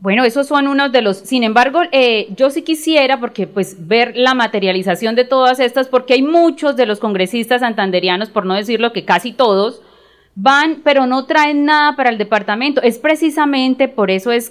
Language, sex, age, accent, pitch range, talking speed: Spanish, female, 30-49, Colombian, 215-280 Hz, 190 wpm